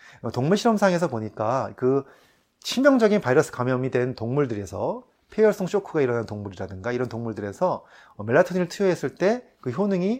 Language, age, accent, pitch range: Korean, 30-49, native, 115-165 Hz